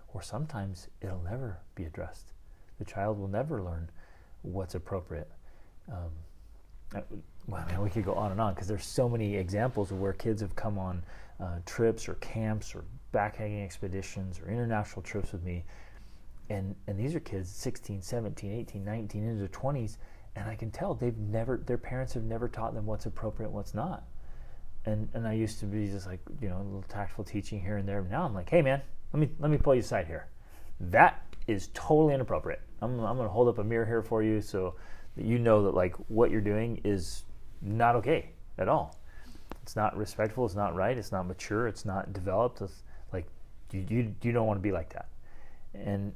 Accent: American